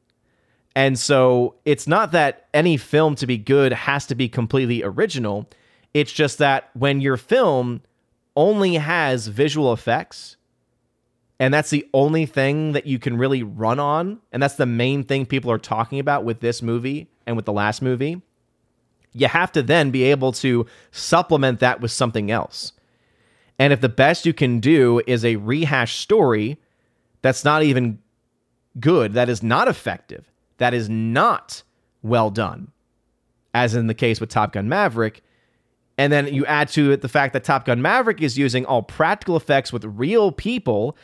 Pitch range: 120-145 Hz